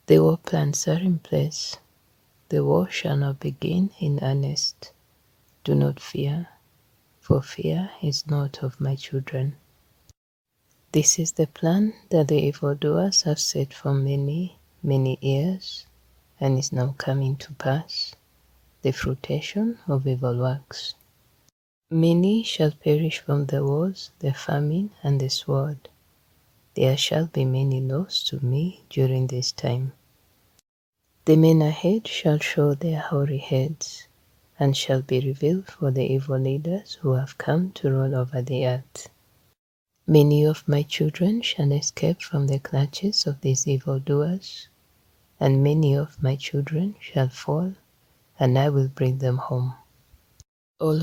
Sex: female